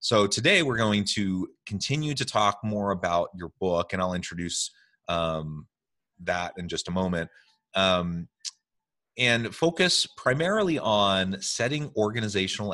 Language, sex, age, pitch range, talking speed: English, male, 30-49, 85-110 Hz, 130 wpm